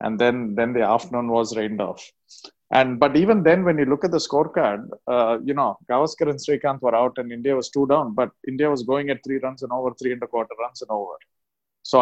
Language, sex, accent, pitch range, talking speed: English, male, Indian, 120-140 Hz, 240 wpm